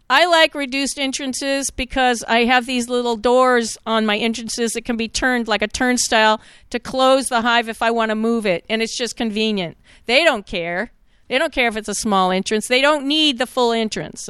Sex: female